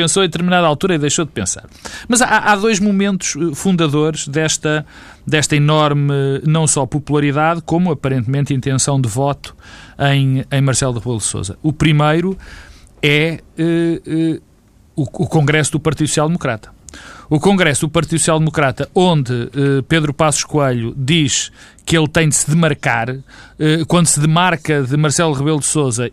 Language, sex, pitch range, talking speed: Portuguese, male, 140-170 Hz, 160 wpm